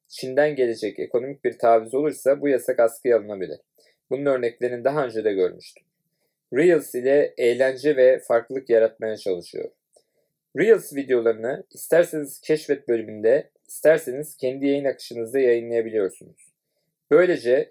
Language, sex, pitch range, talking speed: Turkish, male, 120-175 Hz, 115 wpm